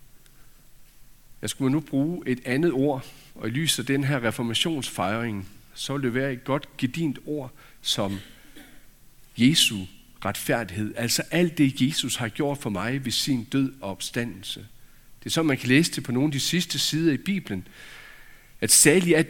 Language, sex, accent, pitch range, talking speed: Danish, male, native, 125-165 Hz, 175 wpm